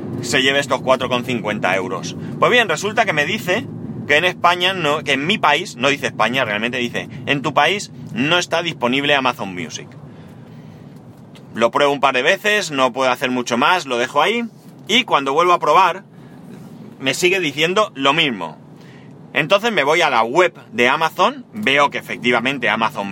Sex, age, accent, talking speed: male, 30-49, Spanish, 175 wpm